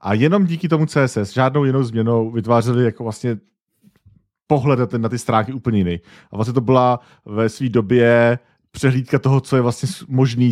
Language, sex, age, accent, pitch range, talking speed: Czech, male, 40-59, native, 105-120 Hz, 170 wpm